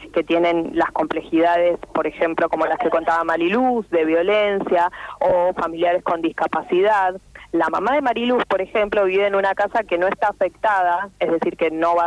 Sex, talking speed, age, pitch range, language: female, 180 wpm, 20-39, 175-215 Hz, Spanish